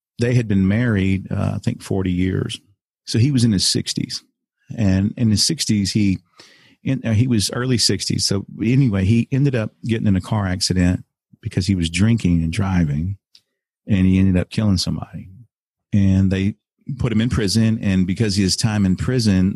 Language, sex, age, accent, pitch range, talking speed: English, male, 40-59, American, 90-115 Hz, 185 wpm